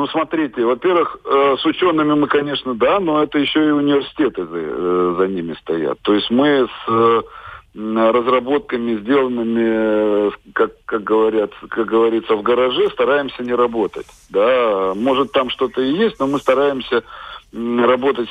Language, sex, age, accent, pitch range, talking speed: Russian, male, 50-69, native, 110-140 Hz, 140 wpm